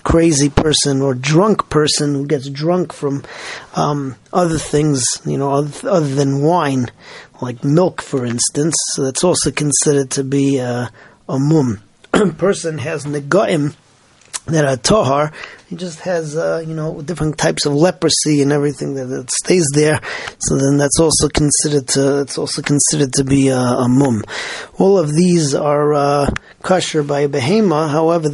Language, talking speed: English, 155 wpm